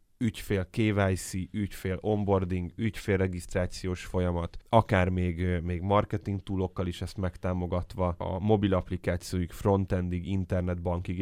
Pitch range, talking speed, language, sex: 90-100 Hz, 105 wpm, Hungarian, male